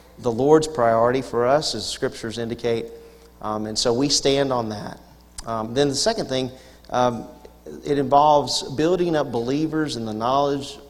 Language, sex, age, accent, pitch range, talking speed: English, male, 40-59, American, 110-140 Hz, 160 wpm